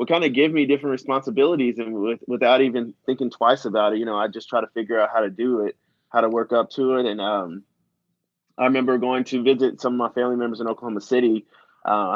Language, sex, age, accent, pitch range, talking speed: English, male, 20-39, American, 115-130 Hz, 230 wpm